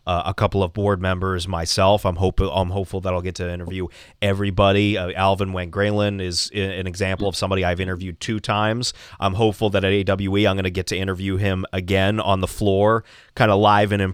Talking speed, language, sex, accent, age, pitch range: 210 wpm, English, male, American, 30-49, 95-115 Hz